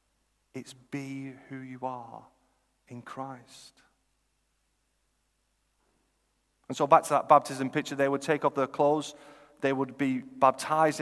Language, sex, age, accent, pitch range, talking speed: English, male, 40-59, British, 125-145 Hz, 130 wpm